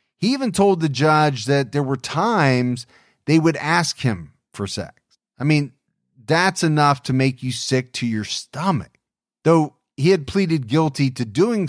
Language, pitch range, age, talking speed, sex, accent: English, 125-170 Hz, 30-49, 170 wpm, male, American